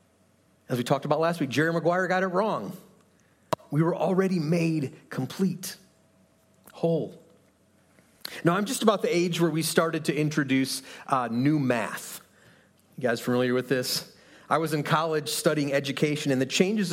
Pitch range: 145-190 Hz